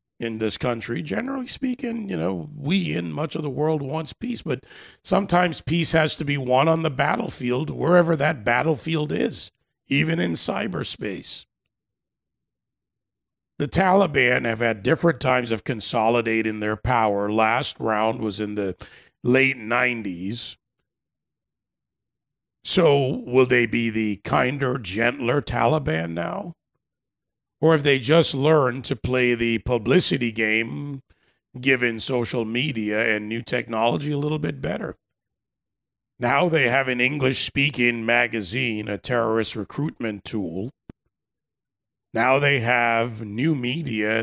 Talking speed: 125 wpm